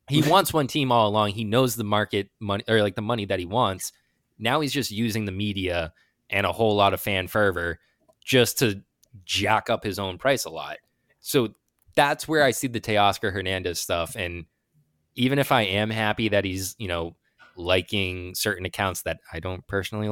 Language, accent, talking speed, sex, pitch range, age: English, American, 195 wpm, male, 90-110 Hz, 20-39